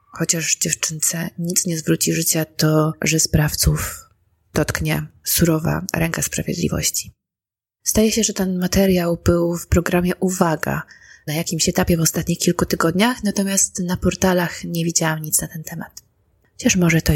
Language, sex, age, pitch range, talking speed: Polish, female, 20-39, 165-195 Hz, 145 wpm